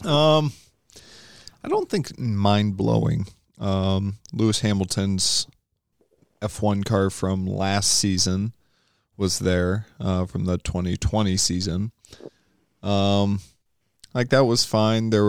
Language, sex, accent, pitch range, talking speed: English, male, American, 95-105 Hz, 115 wpm